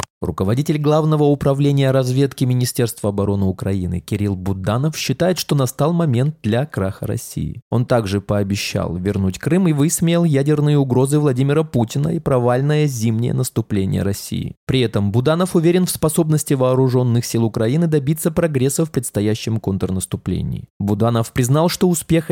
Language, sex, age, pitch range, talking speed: Russian, male, 20-39, 110-150 Hz, 135 wpm